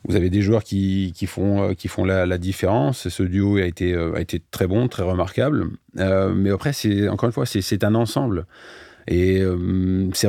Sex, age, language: male, 30-49, French